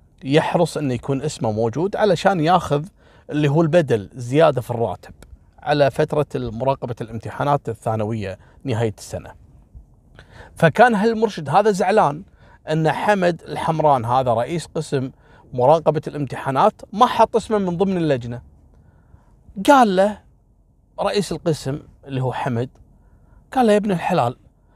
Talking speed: 120 wpm